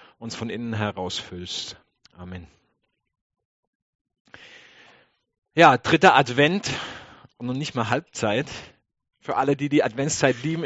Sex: male